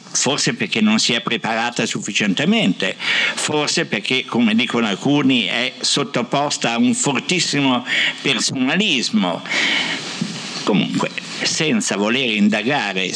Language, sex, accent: Italian, male, native